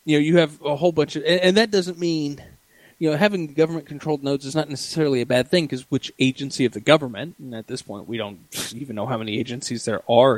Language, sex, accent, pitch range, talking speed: English, male, American, 115-145 Hz, 245 wpm